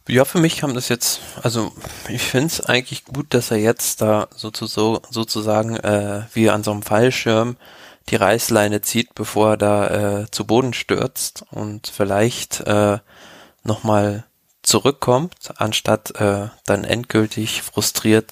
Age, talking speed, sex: 20-39, 145 wpm, male